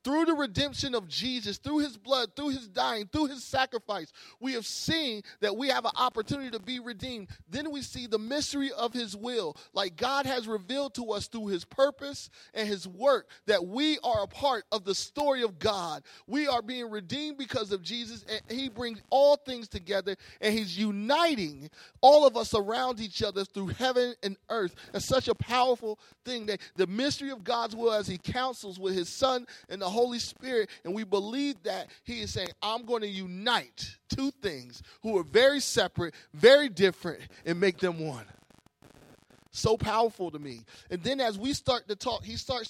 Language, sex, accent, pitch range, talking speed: English, male, American, 190-255 Hz, 195 wpm